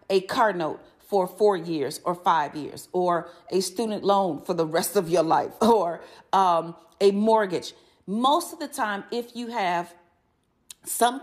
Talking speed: 165 wpm